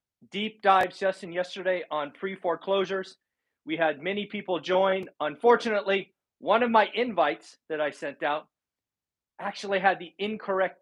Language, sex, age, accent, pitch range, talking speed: English, male, 40-59, American, 150-190 Hz, 140 wpm